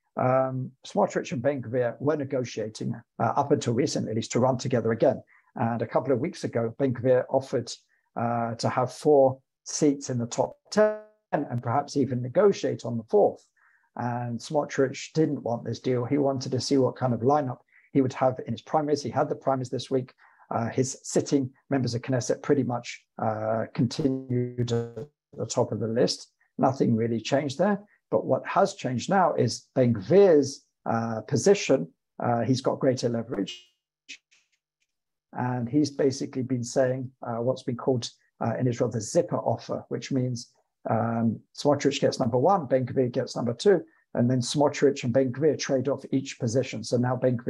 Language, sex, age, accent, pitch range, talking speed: English, male, 50-69, British, 120-140 Hz, 175 wpm